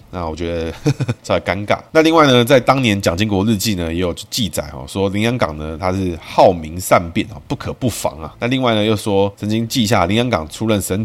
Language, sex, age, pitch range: Chinese, male, 20-39, 85-110 Hz